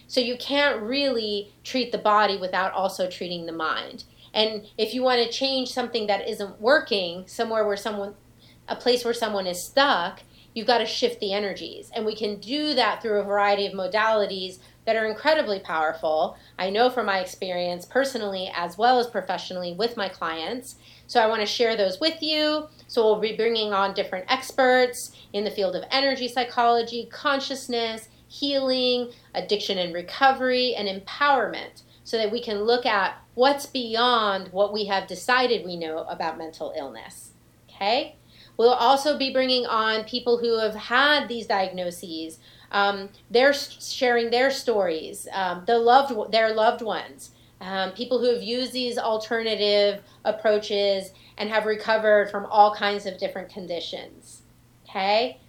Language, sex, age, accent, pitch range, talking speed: English, female, 30-49, American, 195-250 Hz, 160 wpm